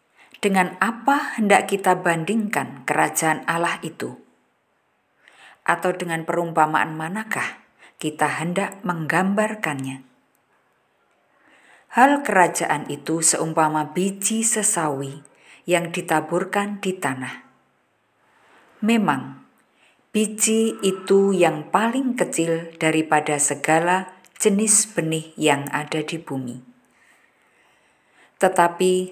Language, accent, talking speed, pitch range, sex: Indonesian, native, 80 wpm, 155-200 Hz, female